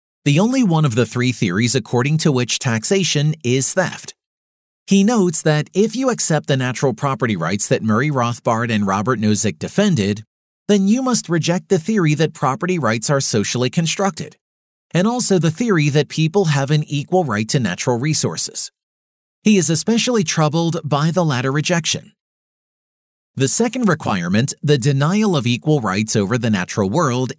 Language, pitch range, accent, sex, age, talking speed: English, 125-180 Hz, American, male, 40-59, 165 wpm